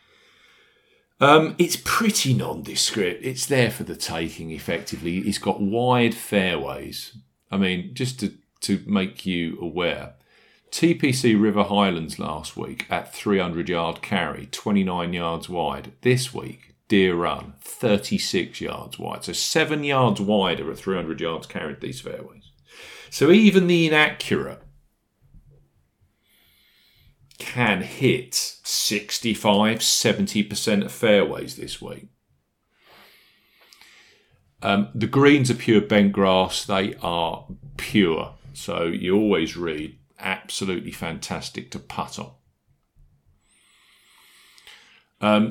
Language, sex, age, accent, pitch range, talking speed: English, male, 40-59, British, 95-140 Hz, 115 wpm